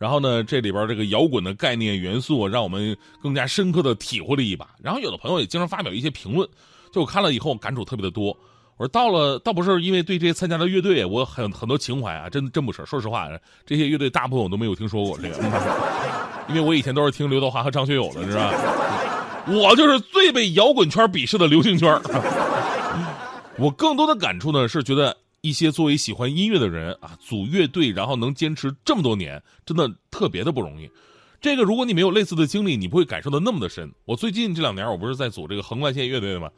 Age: 30-49